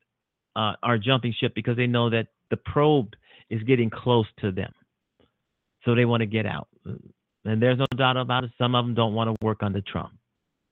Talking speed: 200 wpm